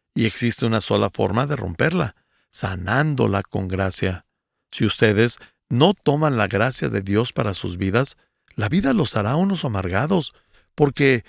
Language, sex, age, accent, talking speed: Spanish, male, 50-69, Mexican, 150 wpm